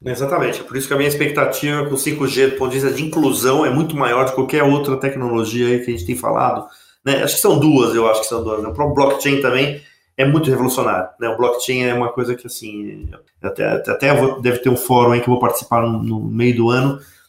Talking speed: 250 wpm